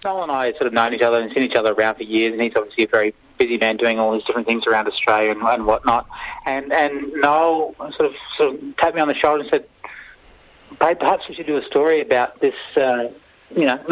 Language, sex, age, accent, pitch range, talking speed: English, male, 30-49, Australian, 120-165 Hz, 255 wpm